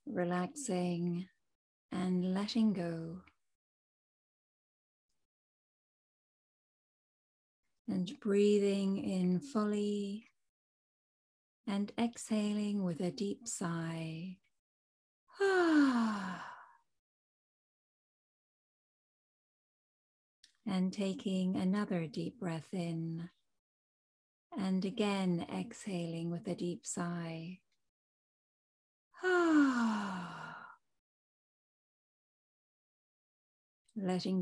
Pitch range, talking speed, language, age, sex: 180-215 Hz, 50 wpm, English, 30-49, female